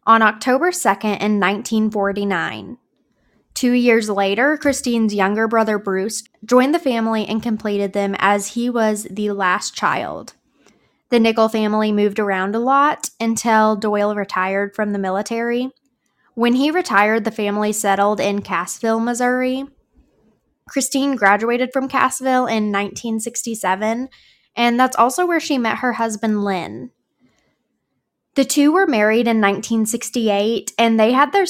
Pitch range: 210-245 Hz